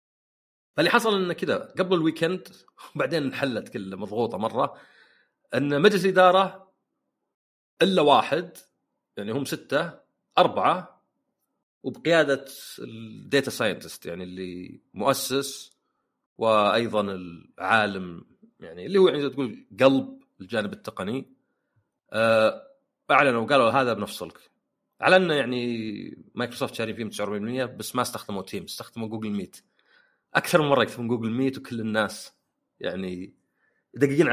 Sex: male